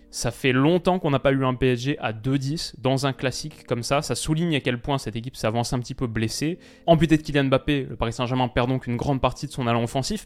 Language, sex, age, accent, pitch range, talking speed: French, male, 20-39, French, 120-150 Hz, 255 wpm